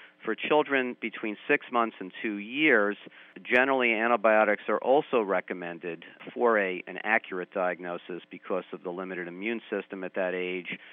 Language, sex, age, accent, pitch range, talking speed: English, male, 50-69, American, 95-120 Hz, 145 wpm